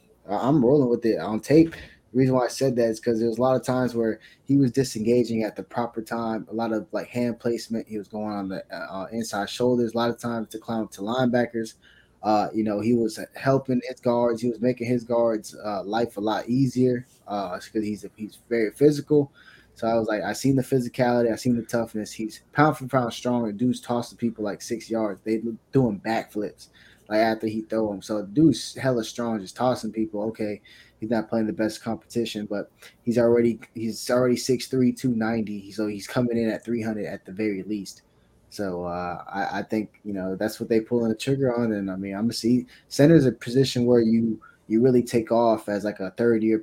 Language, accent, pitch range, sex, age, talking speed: English, American, 105-120 Hz, male, 10-29, 225 wpm